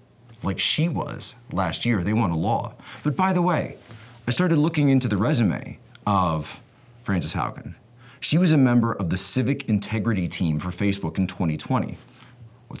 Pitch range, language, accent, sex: 95-125 Hz, English, American, male